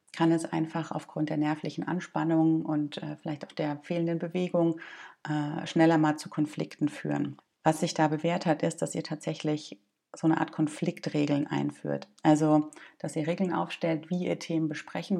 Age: 30-49